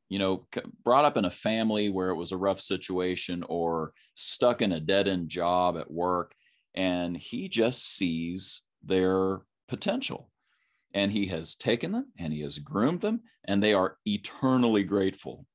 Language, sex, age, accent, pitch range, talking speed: English, male, 40-59, American, 85-100 Hz, 165 wpm